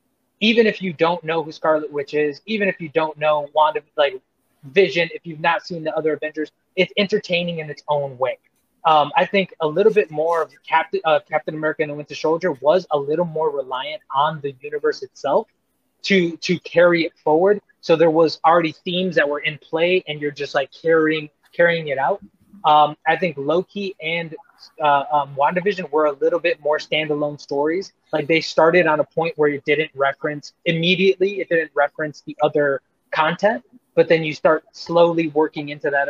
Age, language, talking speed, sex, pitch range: 20-39, English, 195 wpm, male, 145-180 Hz